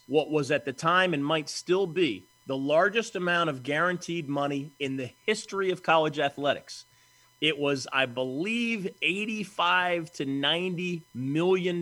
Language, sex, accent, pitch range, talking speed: English, male, American, 130-170 Hz, 145 wpm